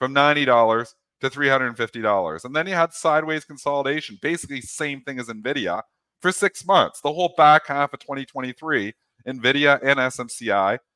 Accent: American